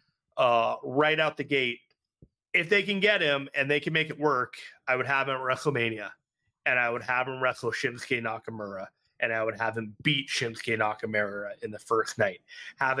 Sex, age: male, 30-49